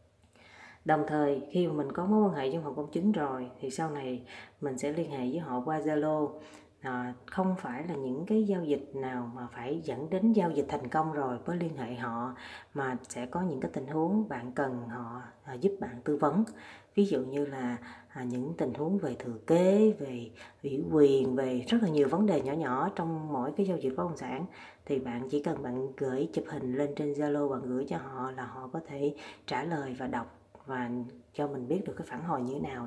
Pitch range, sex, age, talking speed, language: 130-170 Hz, female, 20-39, 225 wpm, Vietnamese